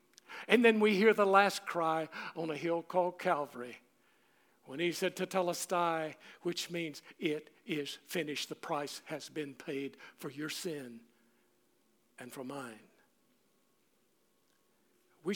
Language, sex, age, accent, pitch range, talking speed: English, male, 60-79, American, 170-215 Hz, 130 wpm